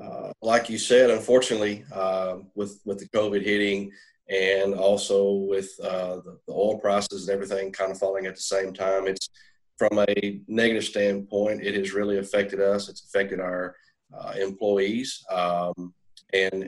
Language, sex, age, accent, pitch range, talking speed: English, male, 40-59, American, 95-105 Hz, 160 wpm